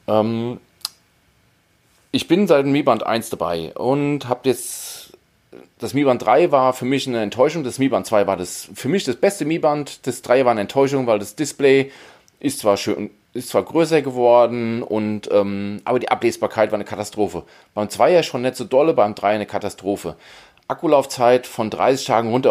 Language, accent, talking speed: German, German, 195 wpm